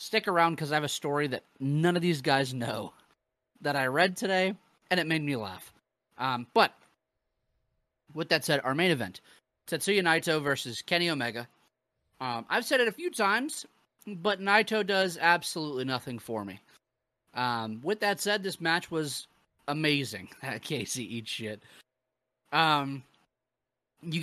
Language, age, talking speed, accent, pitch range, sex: English, 30-49, 155 wpm, American, 130-180 Hz, male